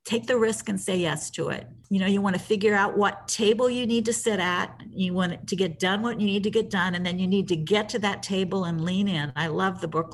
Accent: American